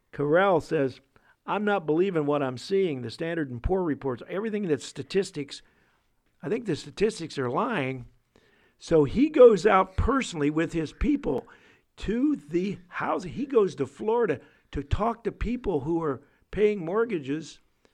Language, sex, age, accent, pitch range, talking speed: English, male, 50-69, American, 135-180 Hz, 150 wpm